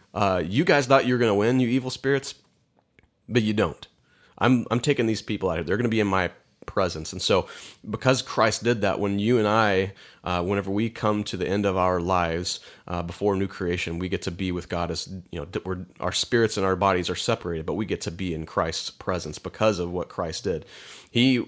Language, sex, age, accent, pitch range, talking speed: English, male, 30-49, American, 90-110 Hz, 230 wpm